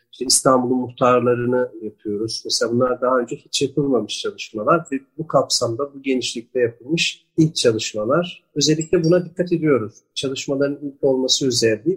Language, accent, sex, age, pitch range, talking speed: Turkish, native, male, 50-69, 120-150 Hz, 135 wpm